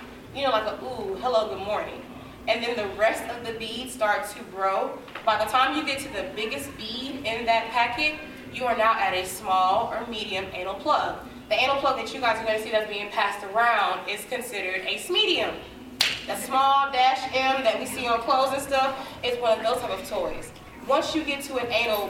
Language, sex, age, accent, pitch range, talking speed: English, female, 20-39, American, 215-270 Hz, 220 wpm